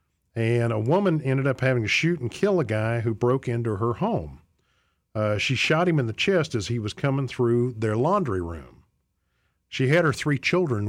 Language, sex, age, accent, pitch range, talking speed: English, male, 50-69, American, 100-140 Hz, 205 wpm